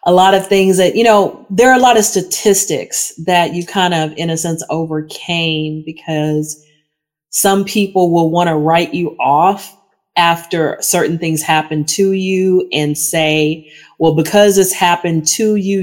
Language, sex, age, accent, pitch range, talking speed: English, female, 30-49, American, 150-190 Hz, 165 wpm